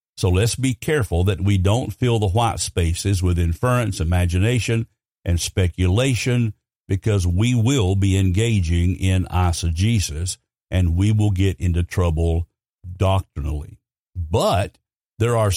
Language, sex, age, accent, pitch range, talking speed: English, male, 60-79, American, 90-115 Hz, 125 wpm